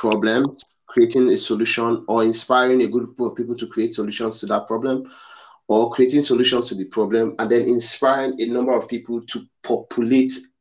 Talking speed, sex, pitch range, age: 175 wpm, male, 110-135 Hz, 30-49